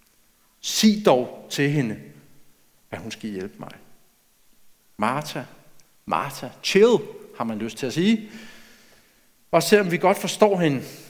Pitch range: 135-185 Hz